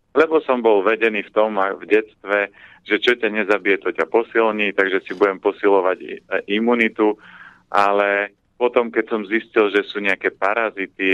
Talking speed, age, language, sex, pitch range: 155 wpm, 30-49, Slovak, male, 95-110 Hz